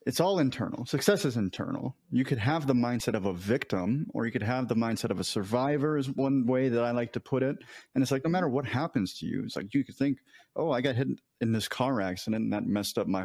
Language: English